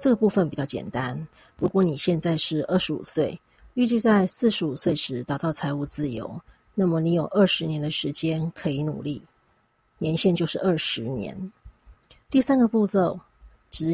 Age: 40-59